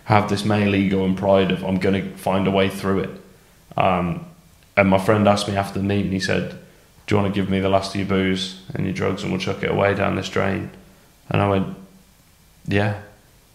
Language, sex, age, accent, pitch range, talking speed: English, male, 20-39, British, 95-105 Hz, 230 wpm